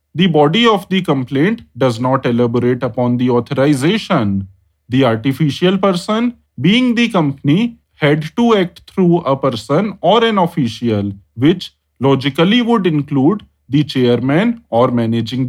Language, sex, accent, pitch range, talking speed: English, male, Indian, 120-190 Hz, 130 wpm